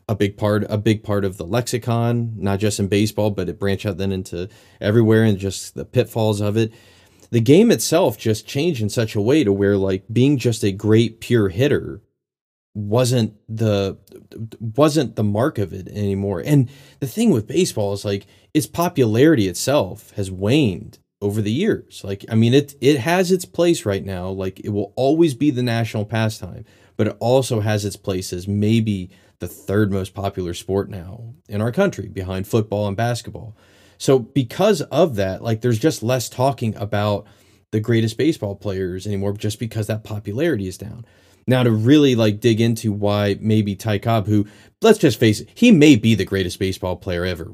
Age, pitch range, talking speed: 30-49, 100-115 Hz, 190 wpm